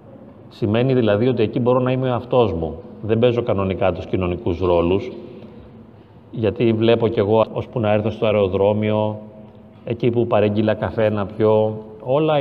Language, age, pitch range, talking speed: Greek, 30-49, 105-130 Hz, 150 wpm